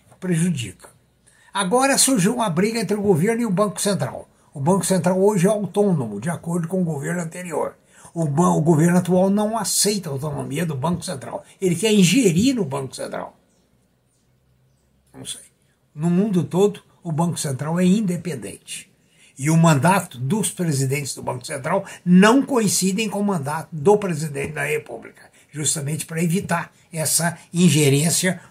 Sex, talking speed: male, 155 wpm